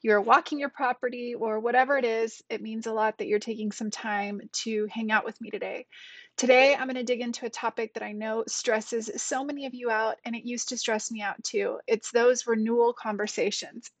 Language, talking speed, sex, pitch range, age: English, 225 wpm, female, 220-260 Hz, 30-49